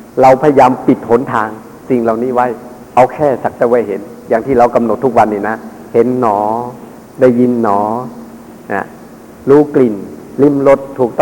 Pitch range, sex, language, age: 120-150 Hz, male, Thai, 50-69